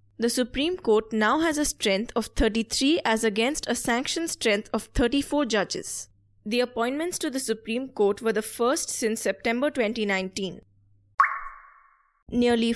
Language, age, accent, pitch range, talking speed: English, 20-39, Indian, 210-270 Hz, 140 wpm